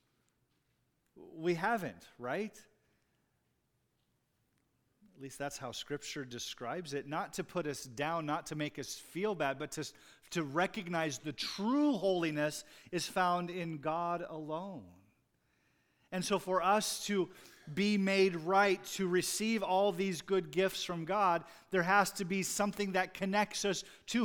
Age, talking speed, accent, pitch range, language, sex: 40-59, 145 wpm, American, 120-180 Hz, English, male